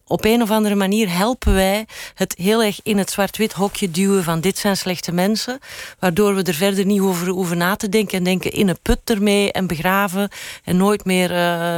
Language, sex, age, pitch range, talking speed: Dutch, female, 40-59, 175-205 Hz, 210 wpm